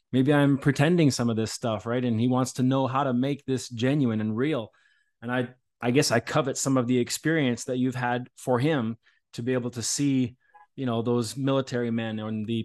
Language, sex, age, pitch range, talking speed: English, male, 20-39, 120-135 Hz, 225 wpm